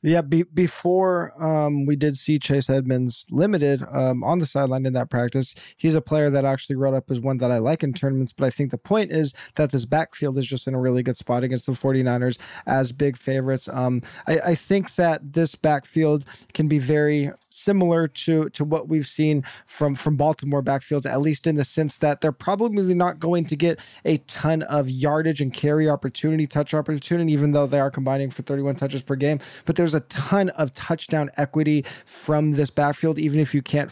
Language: English